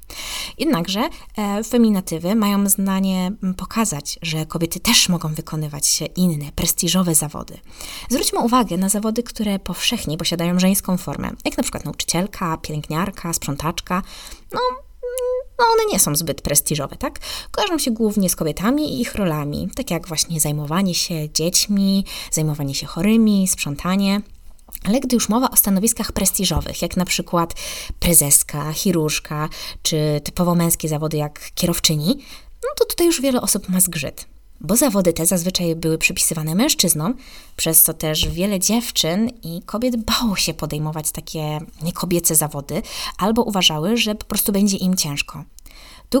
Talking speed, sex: 140 wpm, female